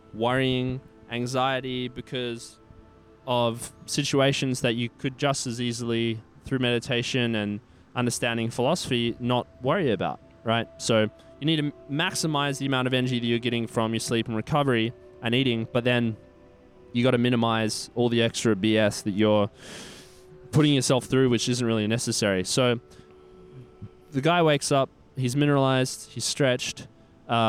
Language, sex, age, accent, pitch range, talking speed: English, male, 20-39, Australian, 110-130 Hz, 145 wpm